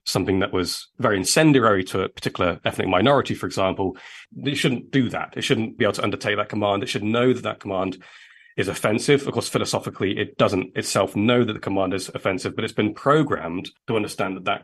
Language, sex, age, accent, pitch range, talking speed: English, male, 30-49, British, 95-125 Hz, 215 wpm